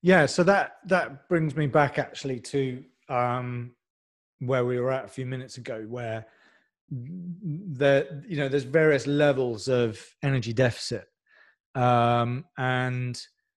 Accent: British